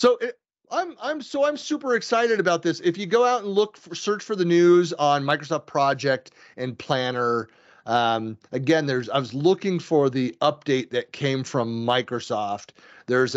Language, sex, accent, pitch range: English, male, American, 115-160 Hz